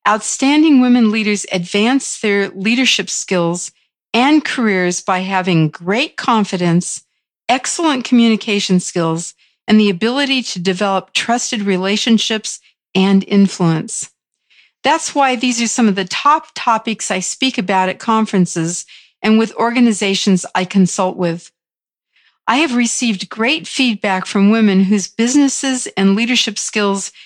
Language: English